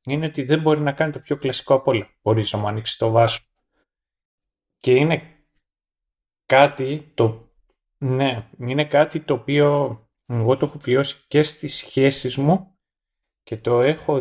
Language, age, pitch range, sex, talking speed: Greek, 30-49, 115-150 Hz, male, 145 wpm